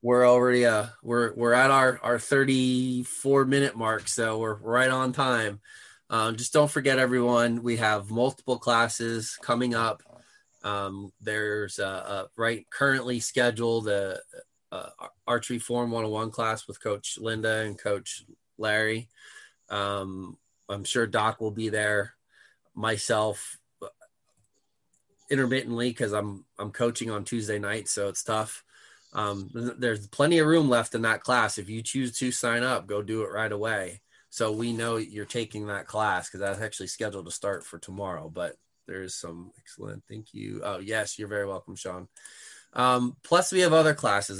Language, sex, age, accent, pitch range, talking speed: English, male, 20-39, American, 105-125 Hz, 160 wpm